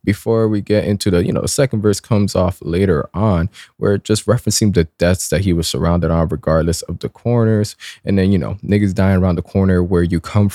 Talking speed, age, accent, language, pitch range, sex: 220 wpm, 20-39, American, English, 90-115 Hz, male